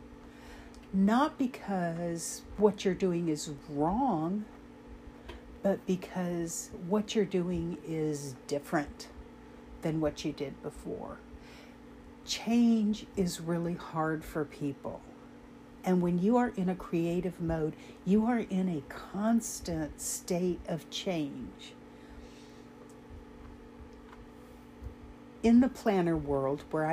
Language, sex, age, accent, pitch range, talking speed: English, female, 60-79, American, 155-195 Hz, 100 wpm